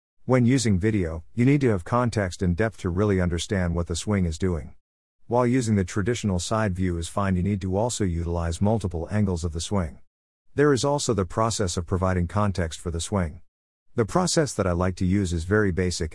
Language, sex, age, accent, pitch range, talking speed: English, male, 50-69, American, 85-110 Hz, 210 wpm